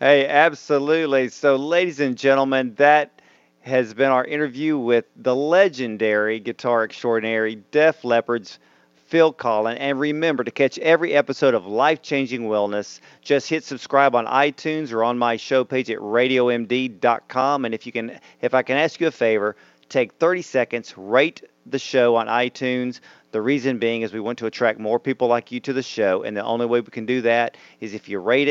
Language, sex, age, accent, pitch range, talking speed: English, male, 40-59, American, 115-140 Hz, 185 wpm